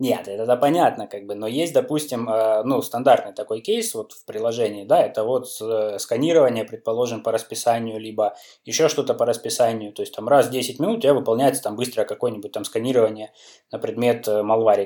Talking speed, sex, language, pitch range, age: 190 wpm, male, Russian, 110-145 Hz, 20-39